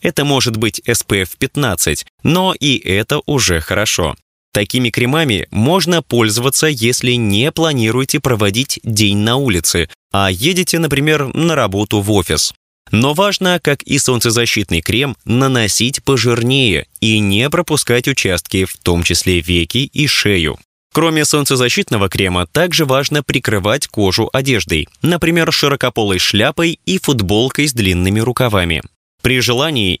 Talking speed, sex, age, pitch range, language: 130 wpm, male, 20-39, 100-140 Hz, Russian